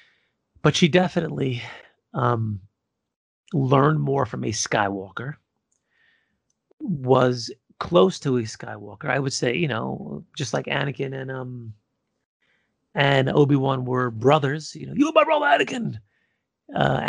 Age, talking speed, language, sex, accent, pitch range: 30-49, 125 wpm, English, male, American, 115-145 Hz